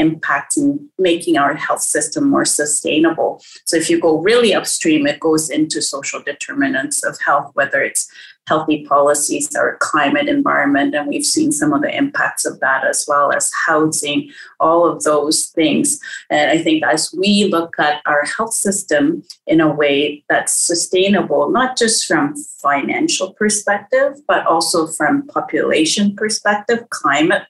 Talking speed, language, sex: 155 wpm, English, female